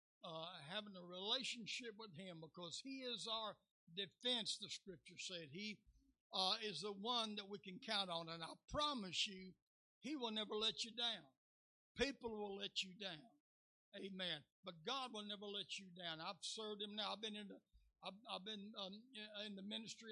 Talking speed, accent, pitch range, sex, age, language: 170 wpm, American, 195-230 Hz, male, 60-79, English